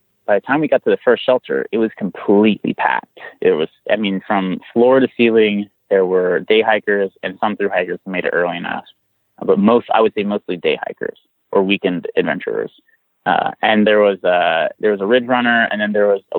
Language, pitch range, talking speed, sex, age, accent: English, 100-135 Hz, 220 wpm, male, 30-49, American